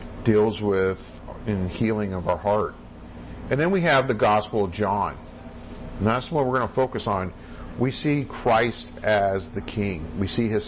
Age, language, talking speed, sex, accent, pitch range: 50-69, English, 180 wpm, male, American, 80-125 Hz